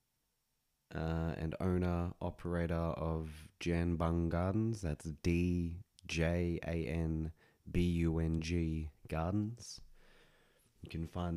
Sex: male